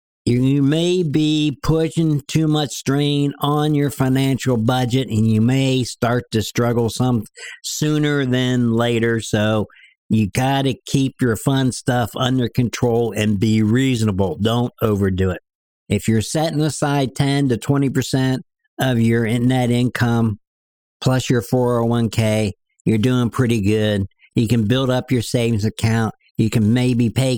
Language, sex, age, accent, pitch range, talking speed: English, male, 60-79, American, 105-130 Hz, 145 wpm